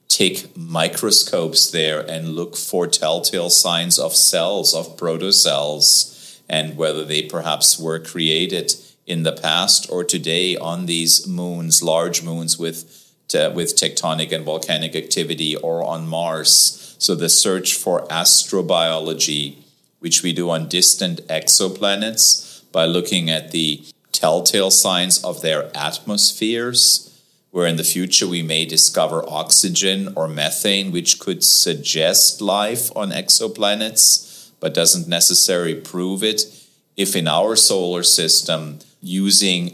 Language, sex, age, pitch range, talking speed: English, male, 30-49, 80-95 Hz, 125 wpm